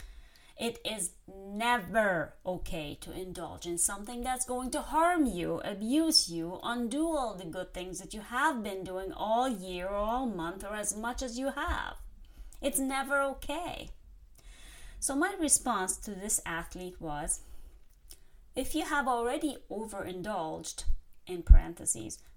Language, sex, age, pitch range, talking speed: English, female, 30-49, 170-245 Hz, 140 wpm